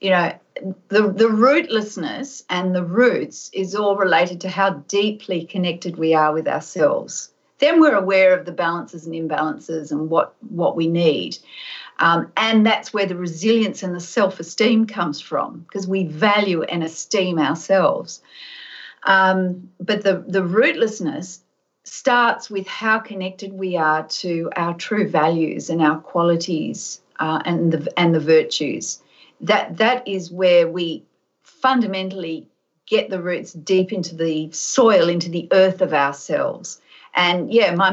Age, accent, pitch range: 50-69, Australian, 170-205 Hz